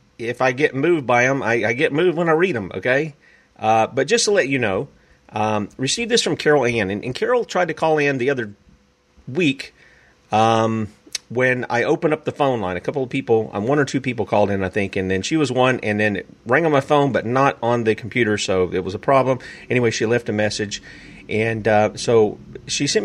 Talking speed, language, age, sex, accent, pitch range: 235 wpm, English, 40-59, male, American, 100-135 Hz